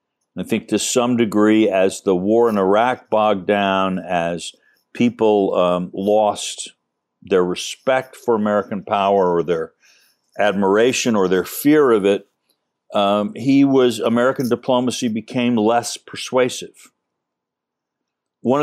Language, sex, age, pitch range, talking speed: English, male, 60-79, 95-120 Hz, 120 wpm